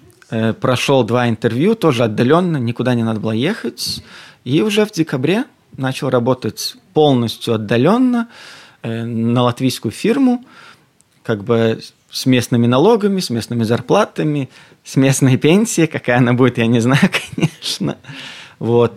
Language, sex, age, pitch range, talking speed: Russian, male, 20-39, 120-155 Hz, 125 wpm